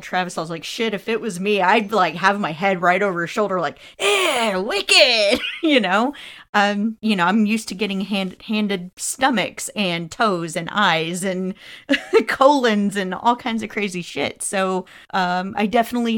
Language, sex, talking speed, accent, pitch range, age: English, female, 180 wpm, American, 185-225 Hz, 30-49